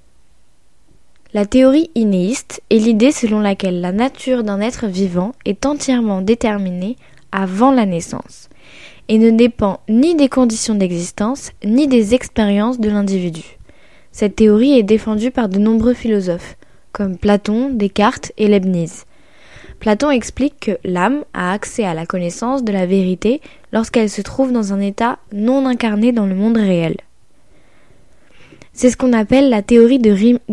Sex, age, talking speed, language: female, 10-29, 145 wpm, French